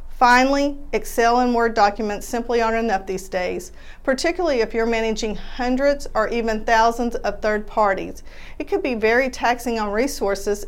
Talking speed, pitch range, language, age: 155 wpm, 210-245 Hz, English, 40-59